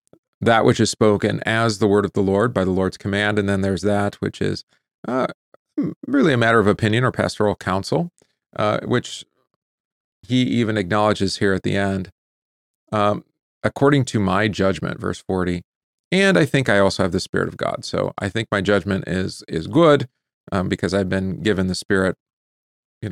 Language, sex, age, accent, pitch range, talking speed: English, male, 40-59, American, 95-110 Hz, 185 wpm